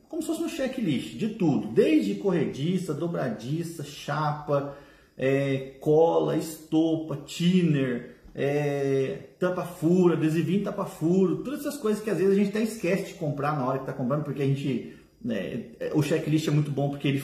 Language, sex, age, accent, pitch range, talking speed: Portuguese, male, 40-59, Brazilian, 155-220 Hz, 165 wpm